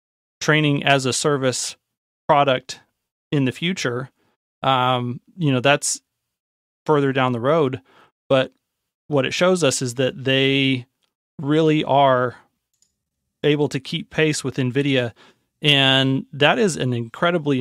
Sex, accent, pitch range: male, American, 125-150 Hz